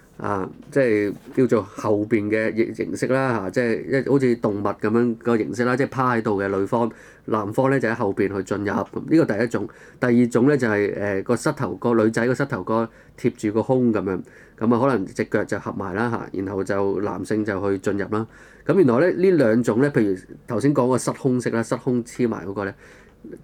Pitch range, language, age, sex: 105-130 Hz, Chinese, 20-39, male